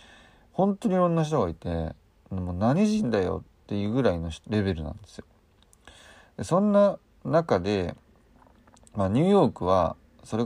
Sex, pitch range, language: male, 90-125 Hz, Japanese